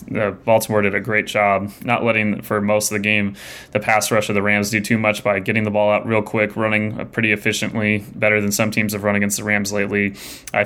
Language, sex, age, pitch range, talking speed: English, male, 20-39, 105-110 Hz, 235 wpm